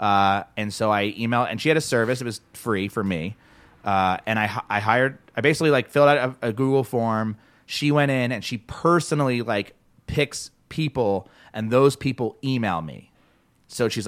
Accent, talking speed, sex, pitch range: American, 190 wpm, male, 100-130 Hz